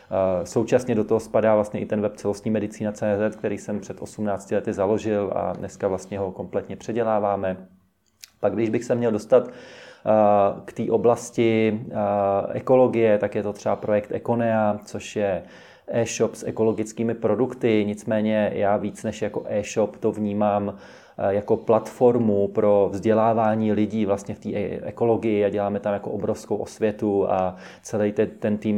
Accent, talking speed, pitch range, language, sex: native, 150 wpm, 100-110 Hz, Czech, male